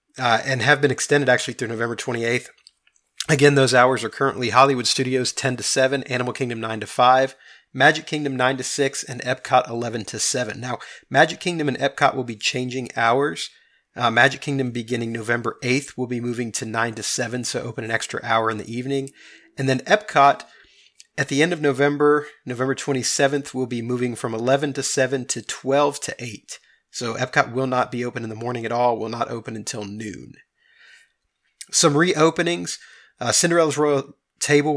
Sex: male